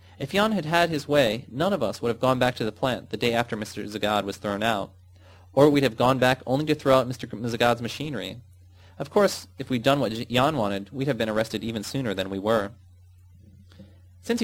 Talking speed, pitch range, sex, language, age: 225 wpm, 100-145 Hz, male, English, 20-39